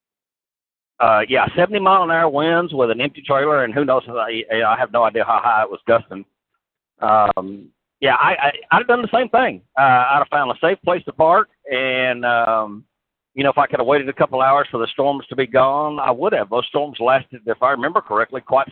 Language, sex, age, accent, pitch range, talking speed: English, male, 50-69, American, 110-140 Hz, 230 wpm